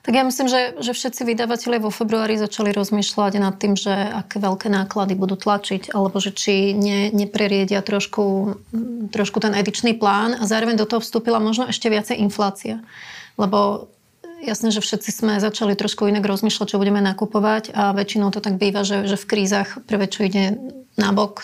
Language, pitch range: Slovak, 200-225 Hz